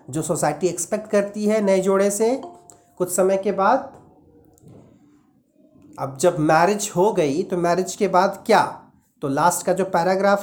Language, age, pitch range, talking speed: Hindi, 40-59, 180-225 Hz, 155 wpm